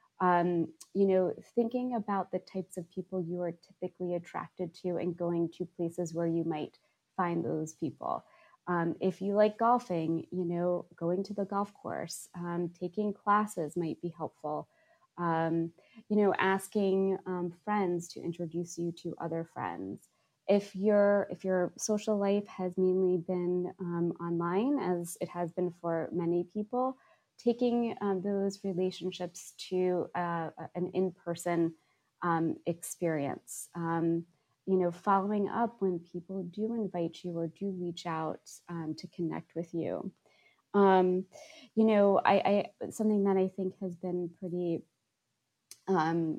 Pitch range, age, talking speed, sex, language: 170-200 Hz, 20-39, 145 wpm, female, English